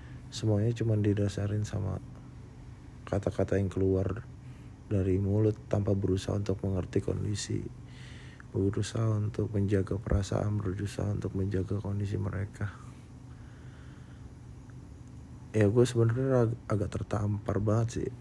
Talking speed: 100 wpm